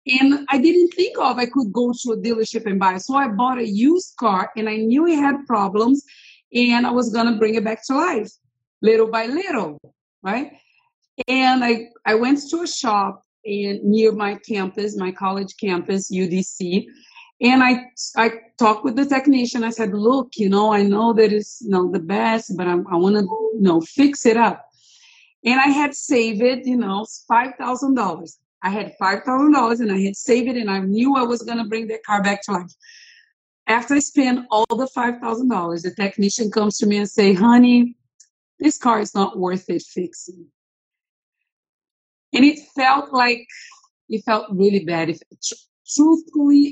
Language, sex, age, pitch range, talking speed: English, female, 40-59, 200-255 Hz, 185 wpm